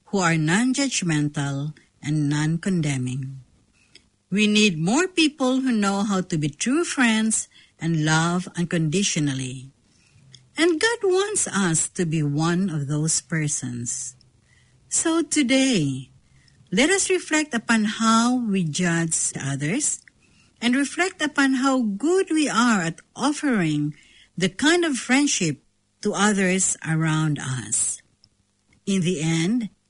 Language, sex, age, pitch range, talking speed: English, female, 60-79, 150-250 Hz, 115 wpm